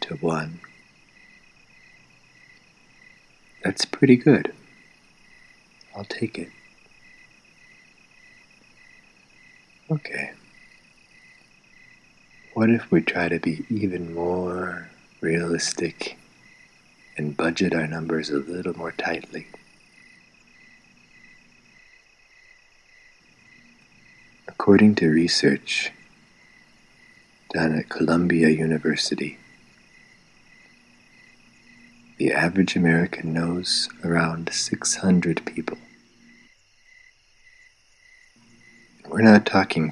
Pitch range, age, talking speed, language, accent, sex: 85-120 Hz, 60-79, 65 wpm, English, American, male